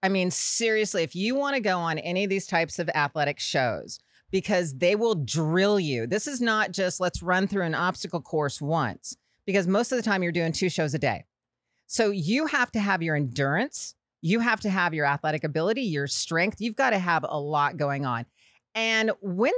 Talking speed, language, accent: 210 wpm, English, American